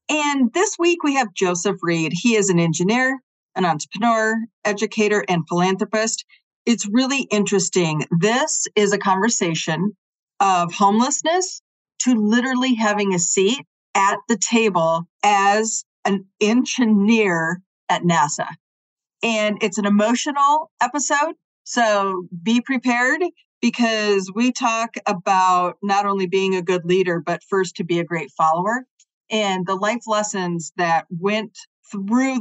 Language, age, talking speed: English, 40-59, 130 wpm